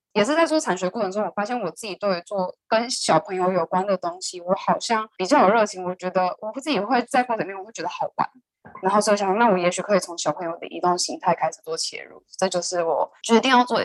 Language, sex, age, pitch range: Chinese, female, 10-29, 180-225 Hz